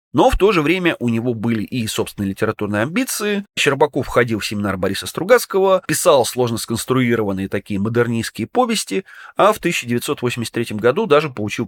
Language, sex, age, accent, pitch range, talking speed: Russian, male, 30-49, native, 115-175 Hz, 155 wpm